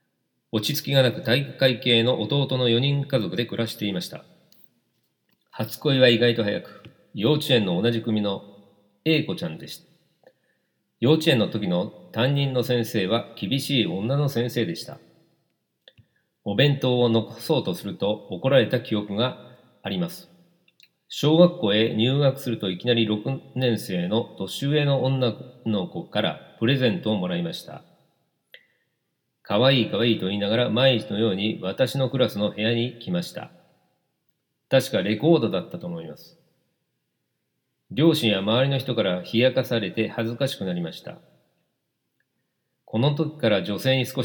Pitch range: 110-145 Hz